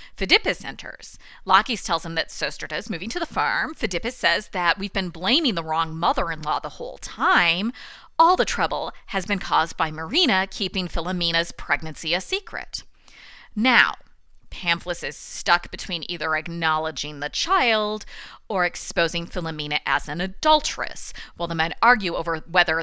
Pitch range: 165-230 Hz